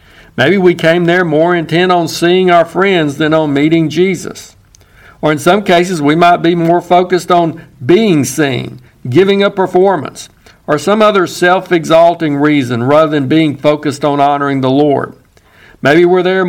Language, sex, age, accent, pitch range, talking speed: English, male, 60-79, American, 140-175 Hz, 165 wpm